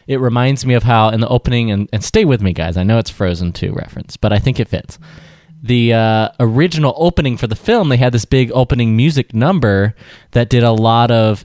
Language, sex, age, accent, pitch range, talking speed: English, male, 20-39, American, 100-125 Hz, 230 wpm